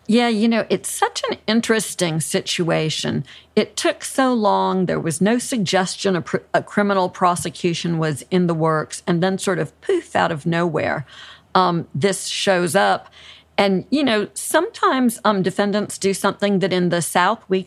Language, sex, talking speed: English, female, 165 wpm